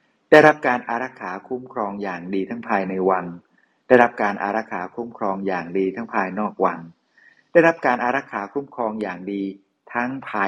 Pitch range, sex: 95-125 Hz, male